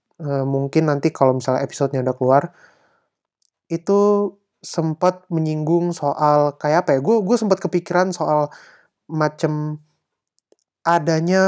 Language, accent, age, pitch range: Indonesian, native, 20-39, 150-180 Hz